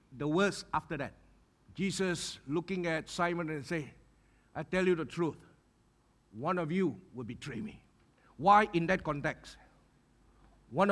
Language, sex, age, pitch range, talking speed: English, male, 50-69, 160-205 Hz, 145 wpm